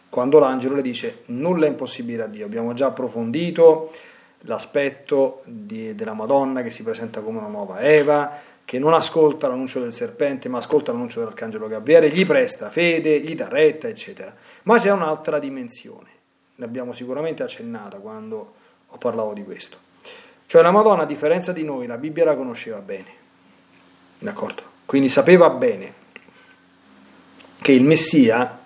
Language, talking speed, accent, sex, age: Italian, 150 wpm, native, male, 40-59